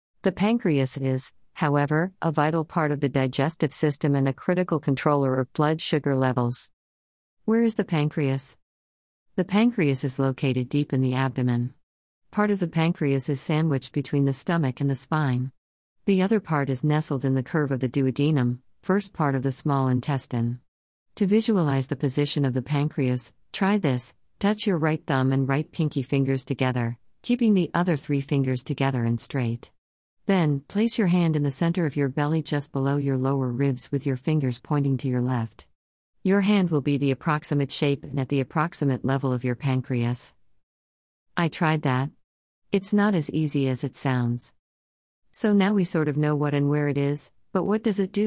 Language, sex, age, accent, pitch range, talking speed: English, female, 50-69, American, 130-160 Hz, 185 wpm